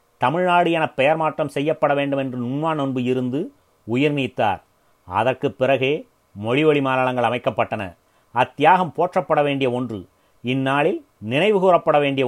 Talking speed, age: 115 wpm, 30-49